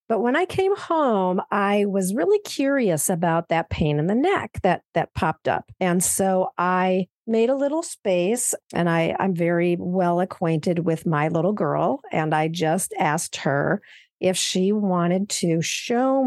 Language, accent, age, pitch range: English, American, 50-69, 170-220 Hz